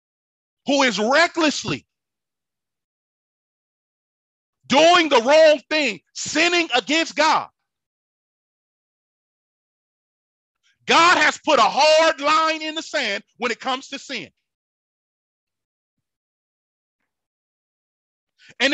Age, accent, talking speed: 40-59, American, 80 wpm